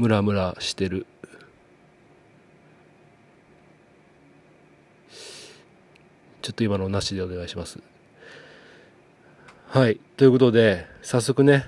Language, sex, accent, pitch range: Japanese, male, native, 100-130 Hz